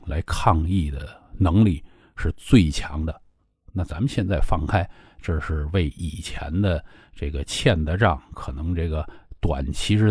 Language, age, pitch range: Chinese, 50-69, 80-115 Hz